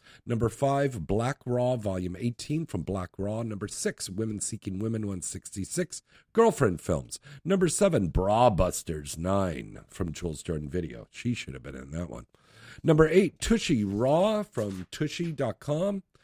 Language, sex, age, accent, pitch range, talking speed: English, male, 50-69, American, 95-135 Hz, 145 wpm